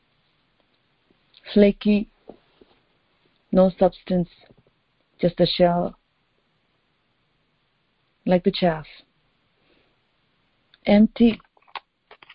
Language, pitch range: English, 175-255 Hz